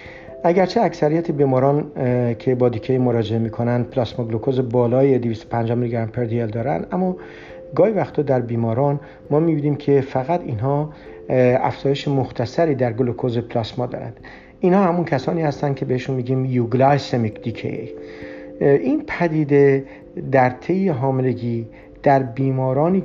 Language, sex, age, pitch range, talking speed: Persian, male, 50-69, 120-150 Hz, 125 wpm